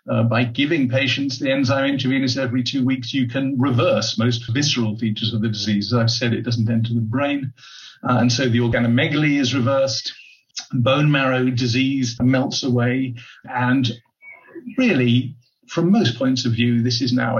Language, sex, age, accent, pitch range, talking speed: English, male, 50-69, British, 120-135 Hz, 170 wpm